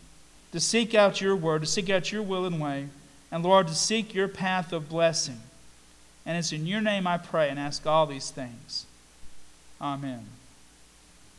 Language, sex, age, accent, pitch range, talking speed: English, male, 40-59, American, 170-200 Hz, 175 wpm